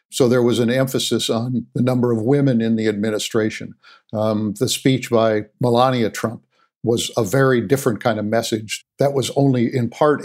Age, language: 50-69, English